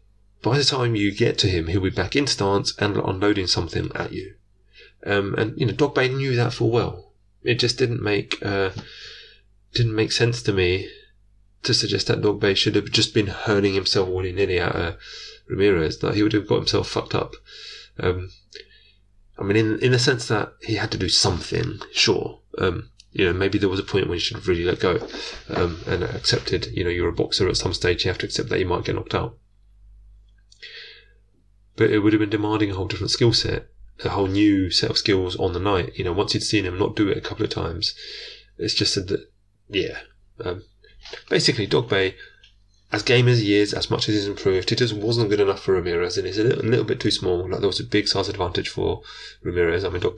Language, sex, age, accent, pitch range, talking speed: English, male, 30-49, British, 100-115 Hz, 225 wpm